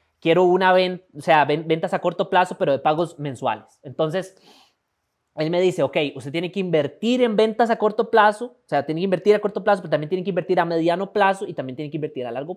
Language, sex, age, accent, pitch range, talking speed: Spanish, male, 20-39, Colombian, 145-185 Hz, 240 wpm